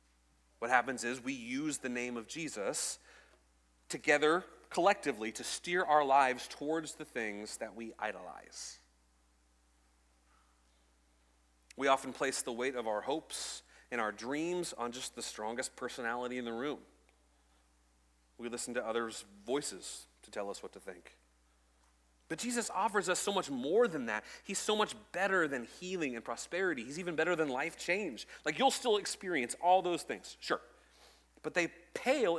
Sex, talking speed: male, 155 wpm